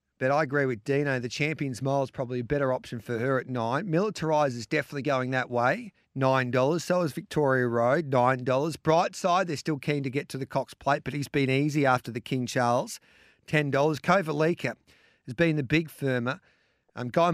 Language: English